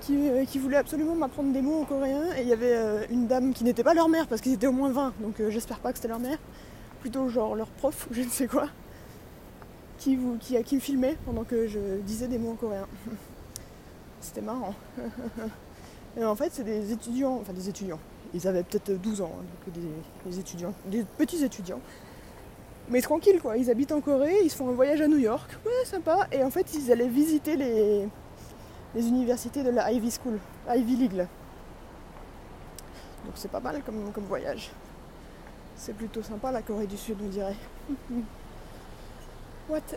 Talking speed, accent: 195 wpm, French